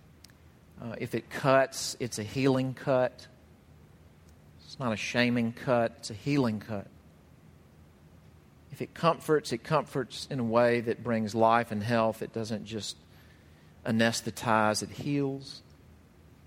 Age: 40-59